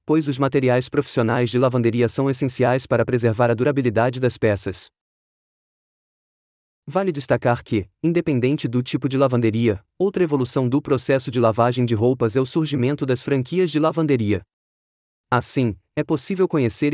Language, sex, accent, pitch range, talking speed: Portuguese, male, Brazilian, 115-145 Hz, 145 wpm